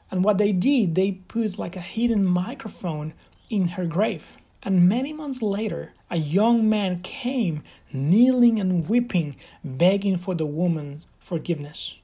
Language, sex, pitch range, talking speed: English, male, 165-205 Hz, 145 wpm